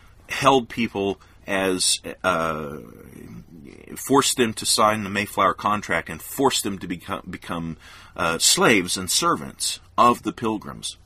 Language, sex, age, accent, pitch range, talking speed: English, male, 40-59, American, 85-100 Hz, 130 wpm